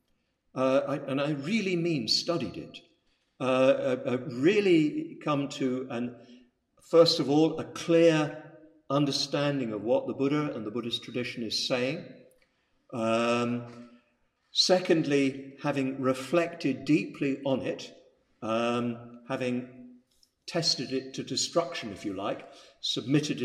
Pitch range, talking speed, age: 120-145 Hz, 125 wpm, 50-69